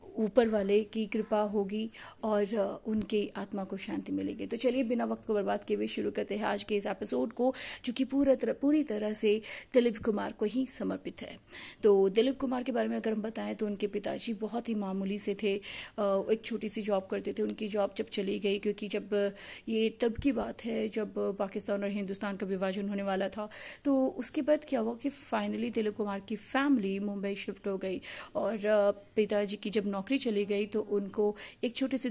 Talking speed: 205 wpm